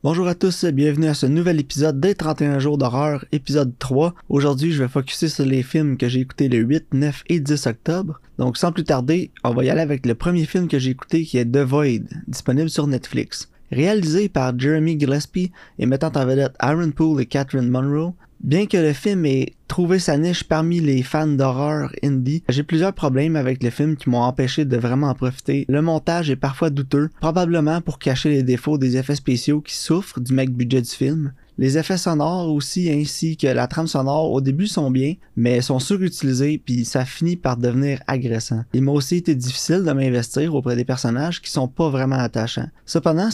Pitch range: 130-160 Hz